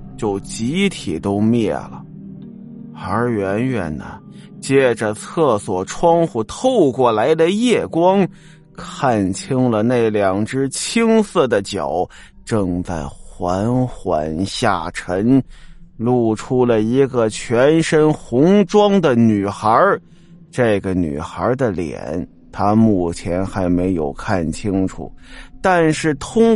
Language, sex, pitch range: Chinese, male, 105-170 Hz